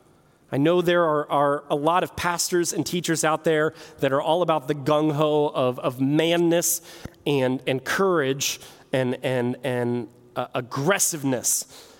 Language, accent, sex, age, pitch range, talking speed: English, American, male, 30-49, 150-235 Hz, 150 wpm